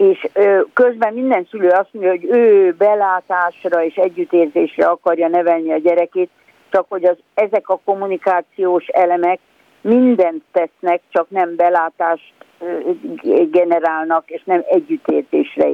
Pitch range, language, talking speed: 165-205 Hz, Hungarian, 120 wpm